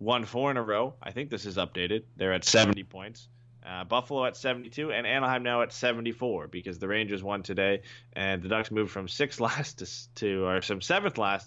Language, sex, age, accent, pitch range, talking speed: English, male, 20-39, American, 100-120 Hz, 215 wpm